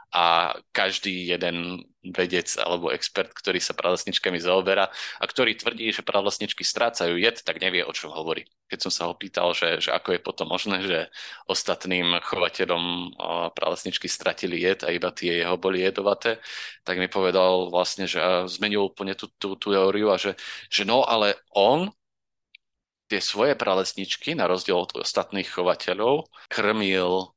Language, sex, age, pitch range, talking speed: Slovak, male, 30-49, 90-105 Hz, 150 wpm